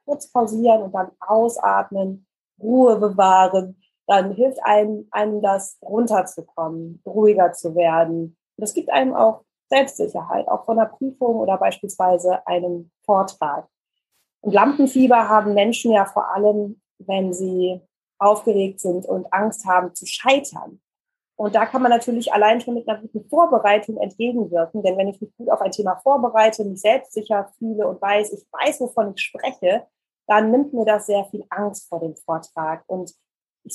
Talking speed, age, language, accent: 160 wpm, 20-39, German, German